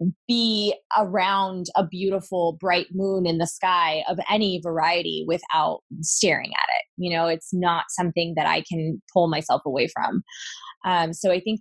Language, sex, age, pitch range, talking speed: English, female, 20-39, 160-190 Hz, 165 wpm